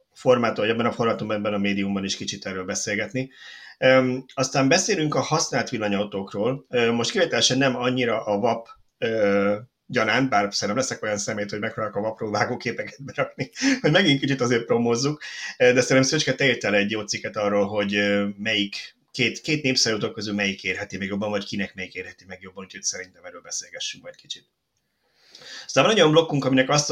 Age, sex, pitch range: 30-49, male, 100-130 Hz